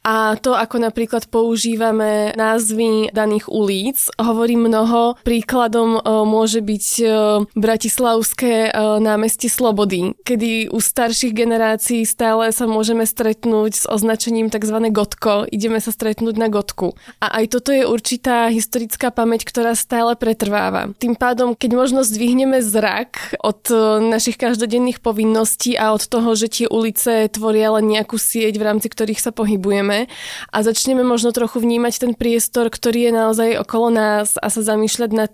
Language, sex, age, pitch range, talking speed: Slovak, female, 20-39, 220-240 Hz, 145 wpm